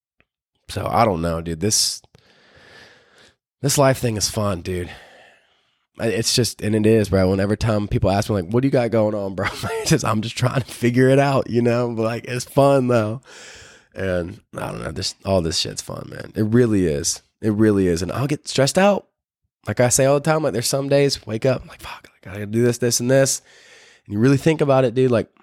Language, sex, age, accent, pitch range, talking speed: English, male, 20-39, American, 105-140 Hz, 225 wpm